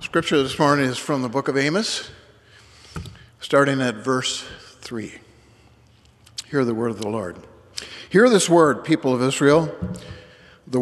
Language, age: English, 60-79